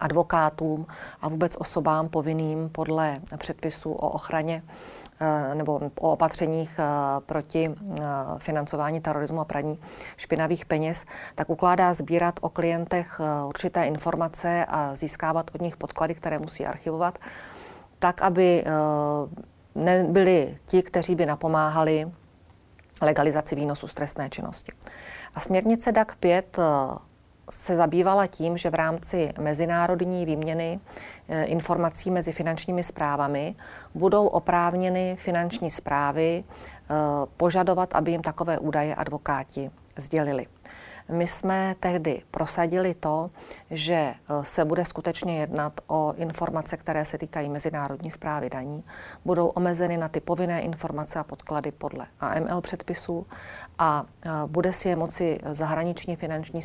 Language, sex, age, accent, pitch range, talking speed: Czech, female, 40-59, native, 150-175 Hz, 115 wpm